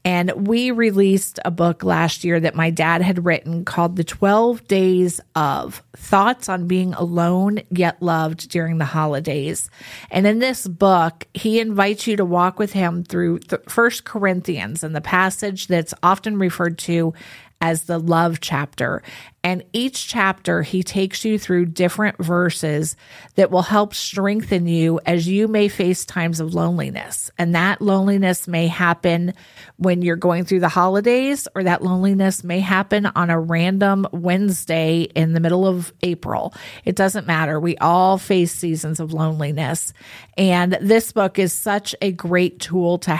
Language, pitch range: English, 170-195 Hz